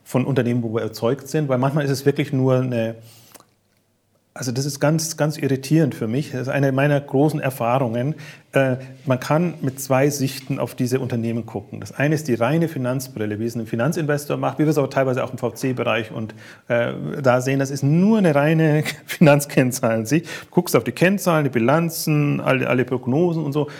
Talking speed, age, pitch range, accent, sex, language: 195 wpm, 40-59, 120-155 Hz, German, male, German